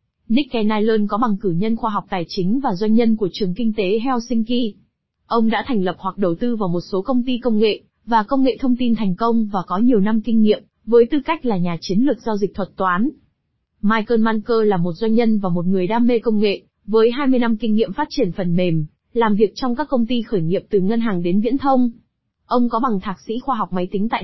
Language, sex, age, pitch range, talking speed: Vietnamese, female, 20-39, 195-245 Hz, 250 wpm